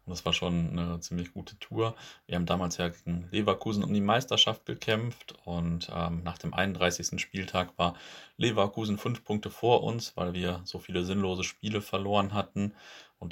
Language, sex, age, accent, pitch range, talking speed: German, male, 30-49, German, 85-100 Hz, 175 wpm